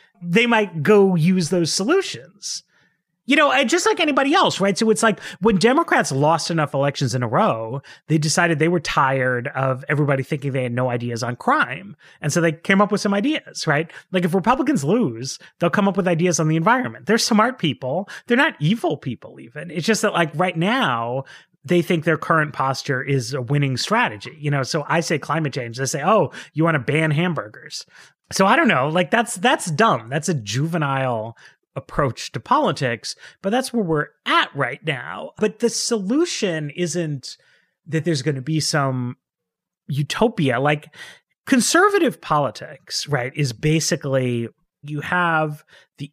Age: 30-49